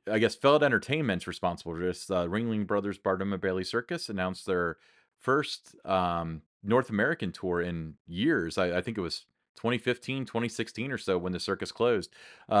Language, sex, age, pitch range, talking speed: English, male, 30-49, 95-120 Hz, 170 wpm